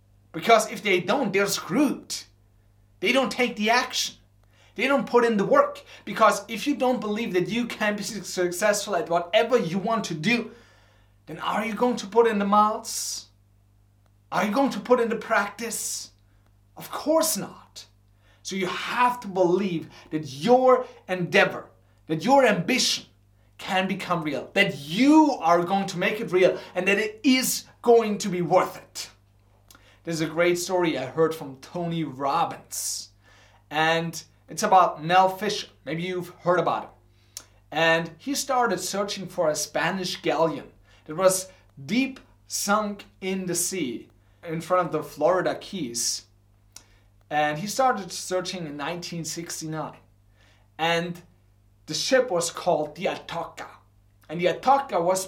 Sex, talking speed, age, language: male, 155 wpm, 30-49, English